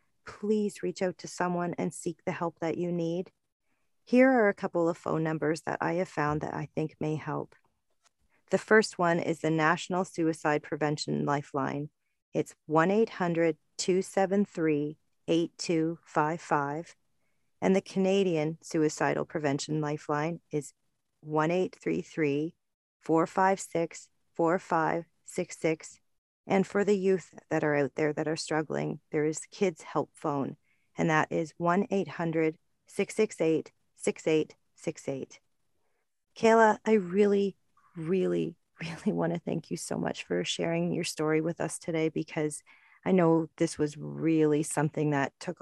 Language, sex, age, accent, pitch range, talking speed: English, female, 40-59, American, 150-180 Hz, 125 wpm